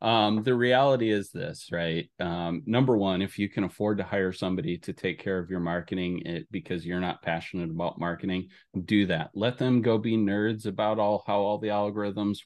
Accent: American